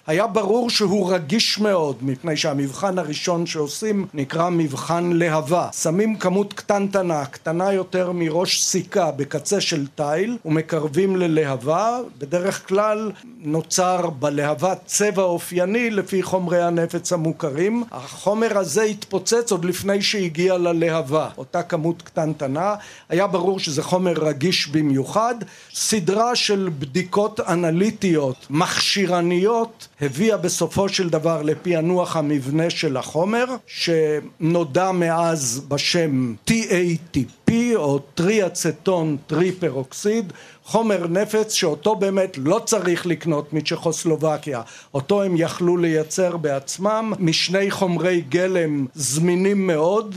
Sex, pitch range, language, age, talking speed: male, 155-195 Hz, Hebrew, 50-69, 105 wpm